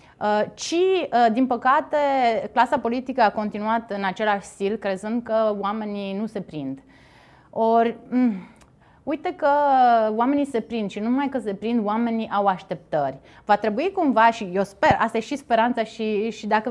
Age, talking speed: 30-49, 155 wpm